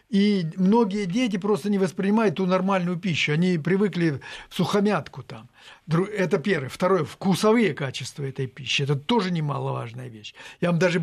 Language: Russian